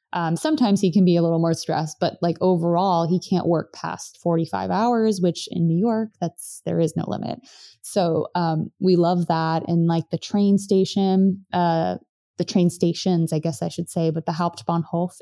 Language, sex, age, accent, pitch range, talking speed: English, female, 20-39, American, 165-195 Hz, 195 wpm